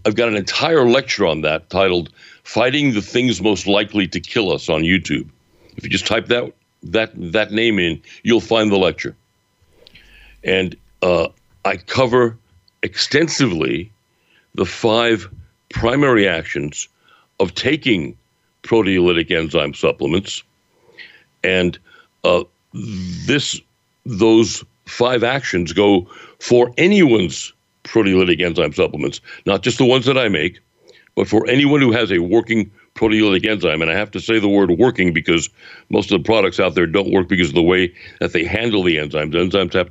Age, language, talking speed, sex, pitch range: 60-79, English, 150 wpm, male, 90-115 Hz